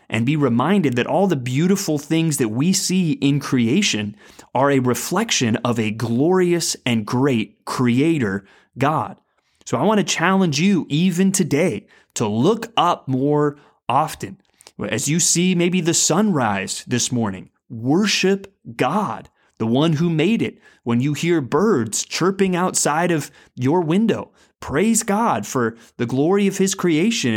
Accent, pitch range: American, 125-185 Hz